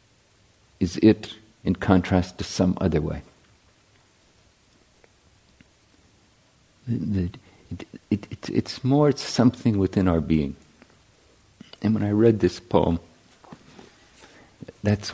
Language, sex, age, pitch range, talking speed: English, male, 50-69, 90-110 Hz, 85 wpm